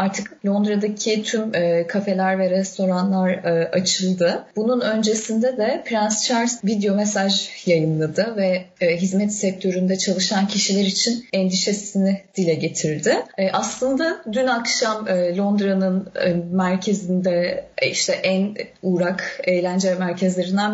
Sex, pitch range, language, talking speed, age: female, 180-210 Hz, Turkish, 100 wpm, 30-49